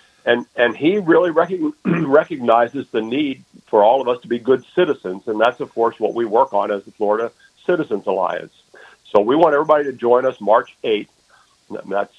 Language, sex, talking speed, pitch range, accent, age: English, male, 190 wpm, 120-145 Hz, American, 50-69